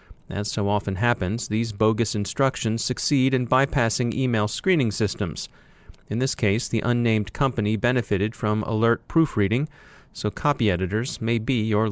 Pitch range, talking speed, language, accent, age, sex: 110-140 Hz, 145 wpm, English, American, 30-49, male